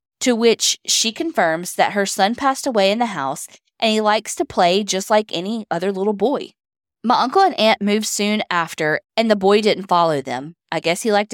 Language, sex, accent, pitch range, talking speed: English, female, American, 180-240 Hz, 210 wpm